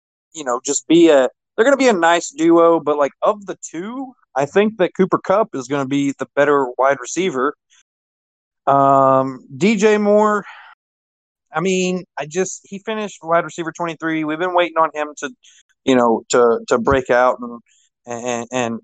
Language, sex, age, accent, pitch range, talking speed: English, male, 30-49, American, 130-175 Hz, 180 wpm